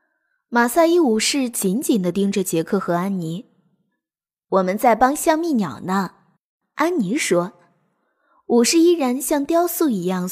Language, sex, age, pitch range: Chinese, female, 20-39, 190-300 Hz